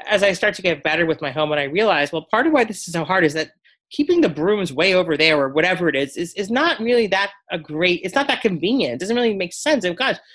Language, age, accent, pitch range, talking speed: English, 30-49, American, 155-225 Hz, 290 wpm